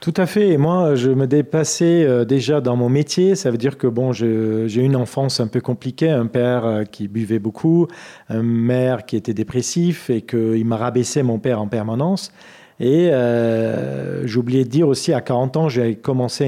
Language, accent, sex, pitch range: French, French, male, 115-155 Hz